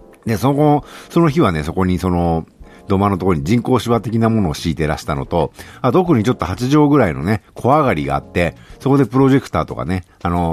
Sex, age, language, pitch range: male, 50-69, Japanese, 85-135 Hz